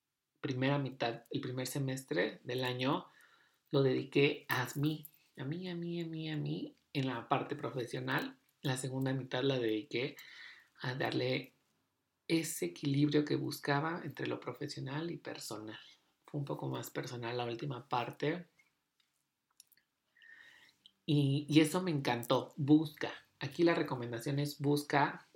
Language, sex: Spanish, male